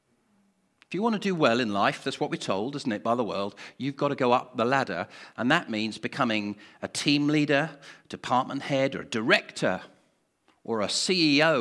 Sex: male